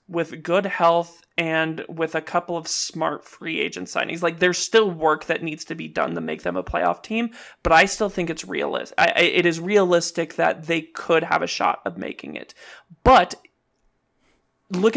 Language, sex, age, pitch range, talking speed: English, male, 20-39, 160-180 Hz, 190 wpm